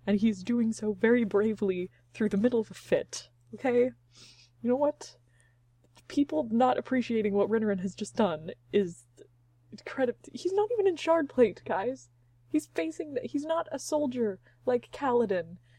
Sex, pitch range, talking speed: female, 195-285 Hz, 150 wpm